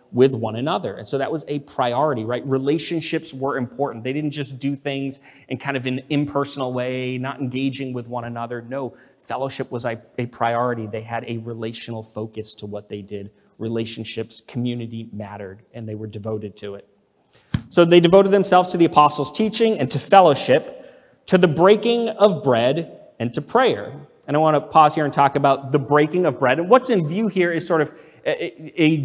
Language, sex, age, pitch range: English, male, 30-49, 125-165 Hz